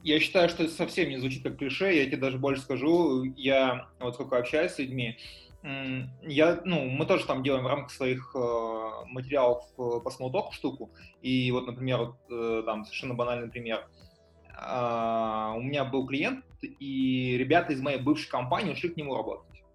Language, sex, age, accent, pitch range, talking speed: Russian, male, 20-39, native, 120-145 Hz, 175 wpm